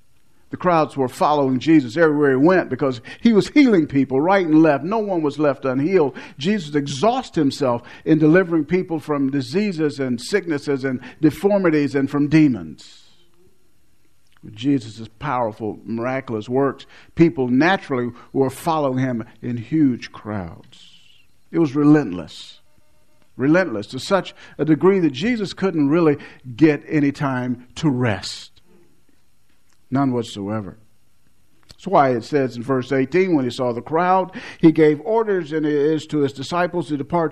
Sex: male